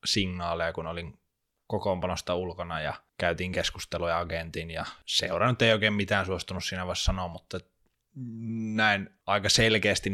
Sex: male